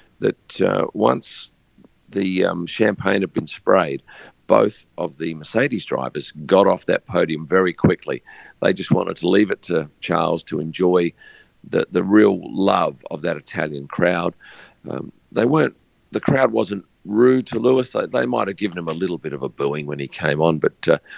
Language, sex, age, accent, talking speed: English, male, 50-69, Australian, 180 wpm